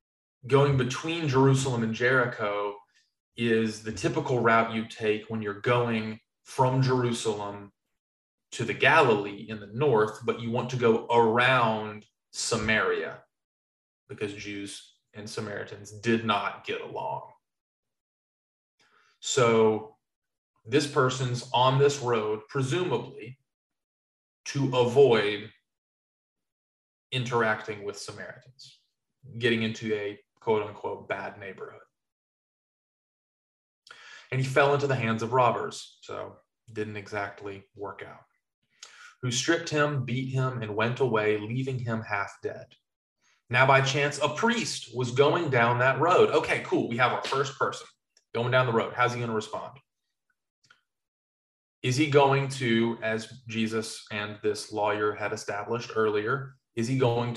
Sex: male